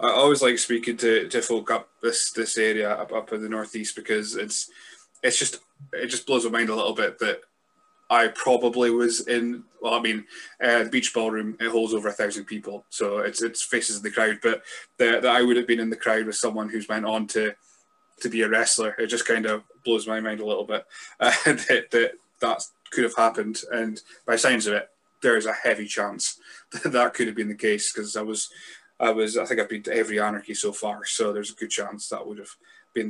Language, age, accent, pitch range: English, 20-39, British, 110-160 Hz